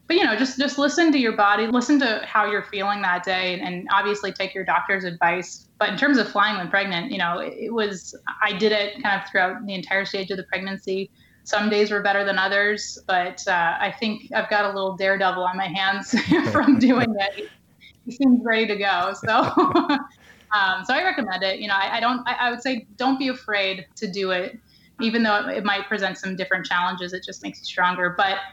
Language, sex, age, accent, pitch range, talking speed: English, female, 20-39, American, 190-220 Hz, 225 wpm